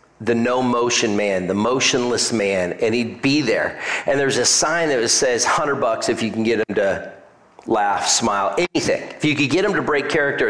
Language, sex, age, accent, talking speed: English, male, 40-59, American, 205 wpm